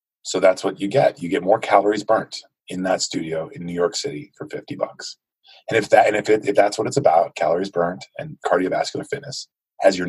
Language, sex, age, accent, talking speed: English, male, 30-49, American, 225 wpm